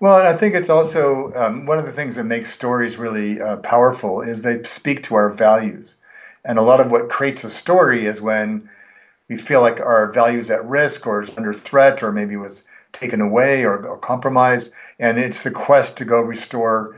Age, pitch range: 50-69, 110-140 Hz